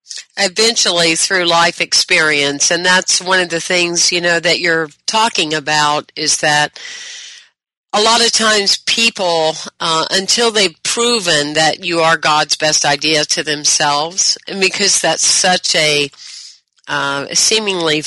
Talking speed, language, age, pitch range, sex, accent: 135 wpm, English, 50-69, 155-195 Hz, female, American